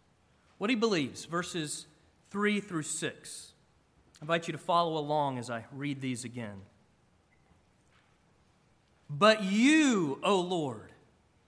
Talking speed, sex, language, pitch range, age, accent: 115 wpm, male, English, 140-220 Hz, 30-49, American